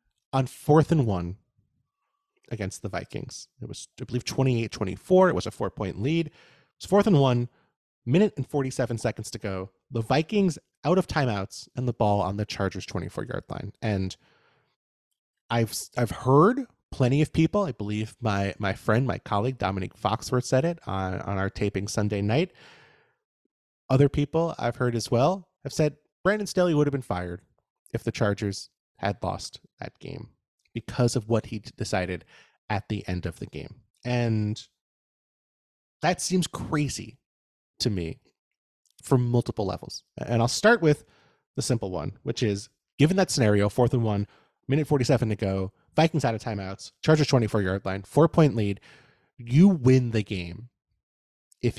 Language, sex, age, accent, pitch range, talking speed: English, male, 30-49, American, 100-145 Hz, 160 wpm